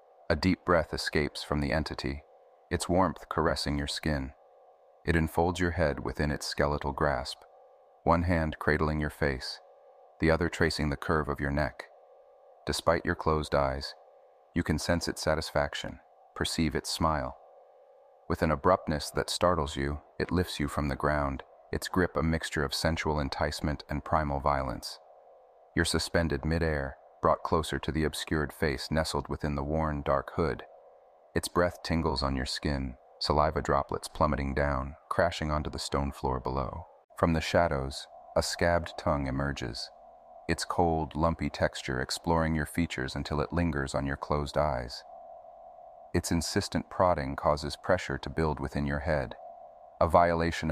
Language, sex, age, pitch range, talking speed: English, male, 30-49, 70-80 Hz, 155 wpm